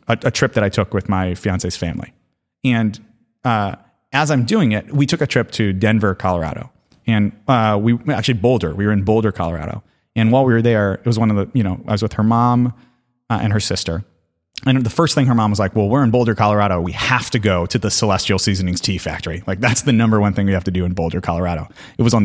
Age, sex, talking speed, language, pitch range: 30-49, male, 250 wpm, English, 100-125 Hz